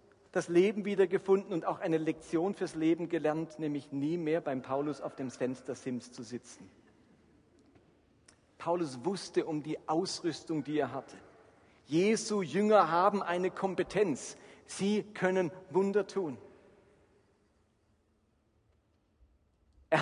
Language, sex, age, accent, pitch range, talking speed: German, male, 40-59, German, 135-205 Hz, 115 wpm